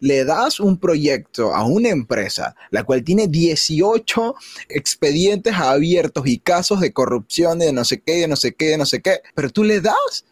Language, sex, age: Spanish, male, 20-39